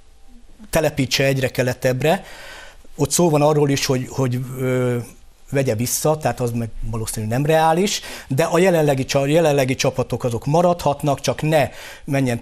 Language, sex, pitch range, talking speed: Hungarian, male, 130-155 Hz, 140 wpm